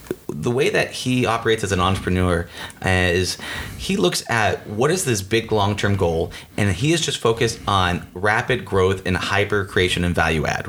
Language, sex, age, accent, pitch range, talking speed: English, male, 30-49, American, 95-120 Hz, 170 wpm